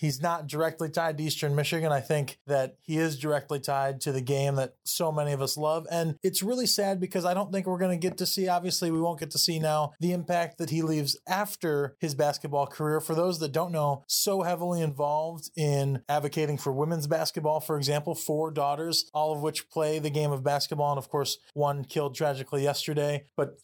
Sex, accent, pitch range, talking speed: male, American, 140-160 Hz, 220 wpm